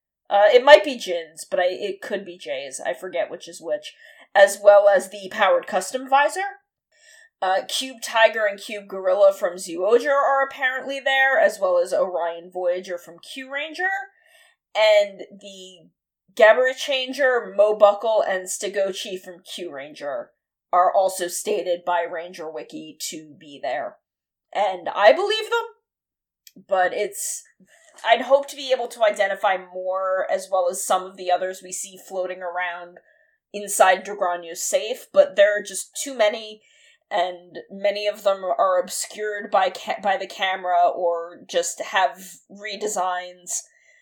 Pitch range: 185-285 Hz